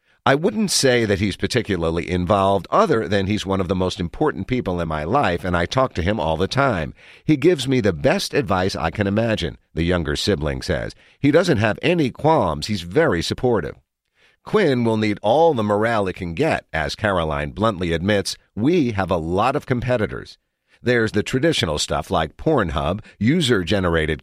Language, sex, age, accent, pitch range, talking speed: English, male, 50-69, American, 90-120 Hz, 185 wpm